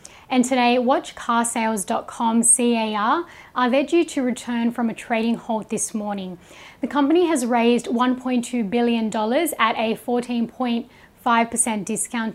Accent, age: Australian, 10-29